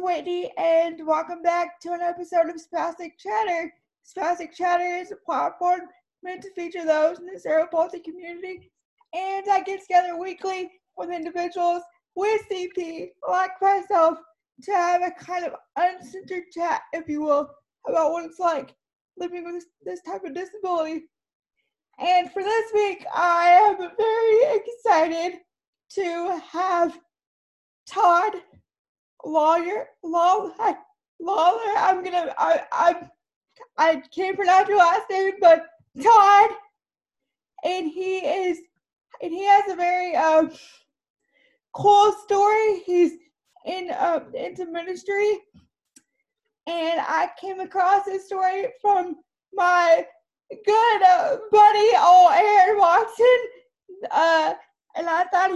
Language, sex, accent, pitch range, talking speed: English, female, American, 345-395 Hz, 125 wpm